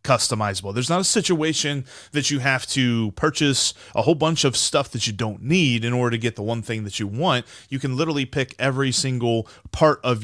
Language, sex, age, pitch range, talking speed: English, male, 30-49, 115-145 Hz, 215 wpm